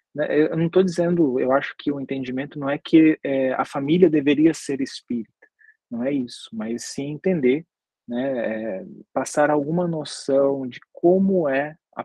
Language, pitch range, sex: Portuguese, 130-175 Hz, male